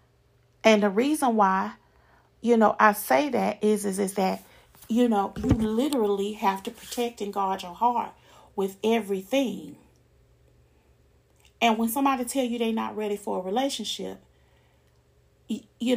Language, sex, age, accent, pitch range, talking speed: English, female, 40-59, American, 195-235 Hz, 145 wpm